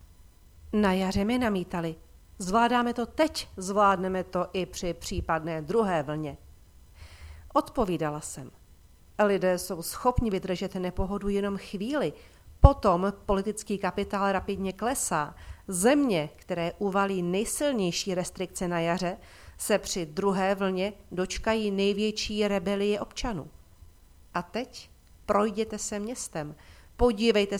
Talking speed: 105 wpm